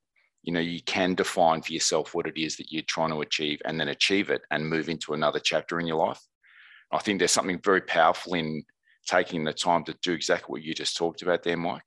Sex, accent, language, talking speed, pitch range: male, Australian, English, 240 wpm, 80-90 Hz